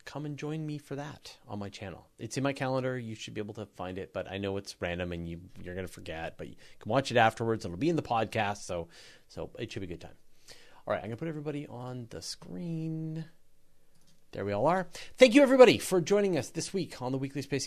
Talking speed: 260 wpm